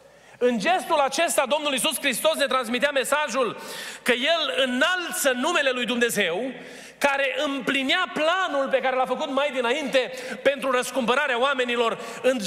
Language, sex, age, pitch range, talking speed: Romanian, male, 30-49, 230-275 Hz, 135 wpm